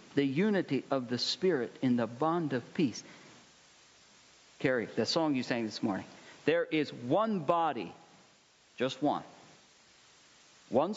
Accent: American